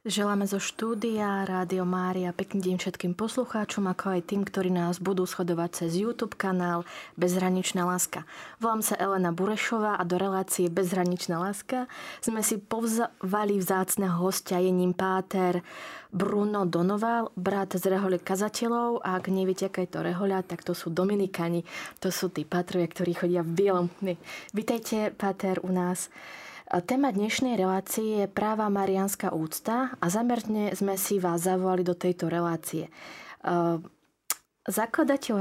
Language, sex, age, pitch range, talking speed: Slovak, female, 20-39, 180-210 Hz, 140 wpm